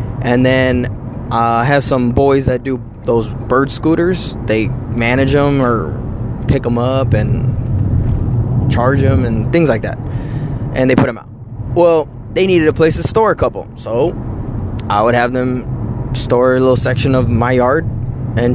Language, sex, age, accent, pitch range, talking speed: English, male, 20-39, American, 115-130 Hz, 170 wpm